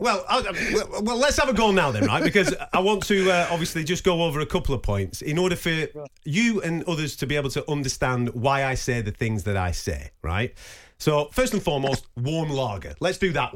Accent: British